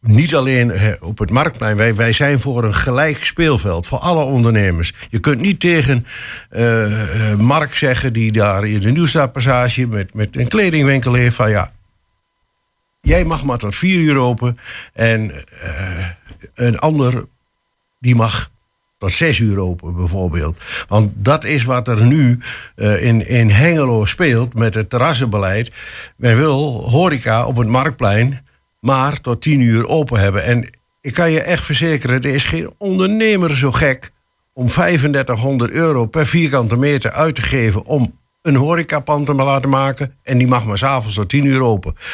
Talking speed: 160 wpm